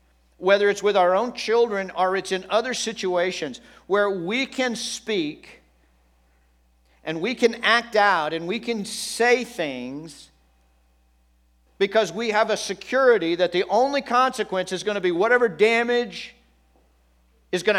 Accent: American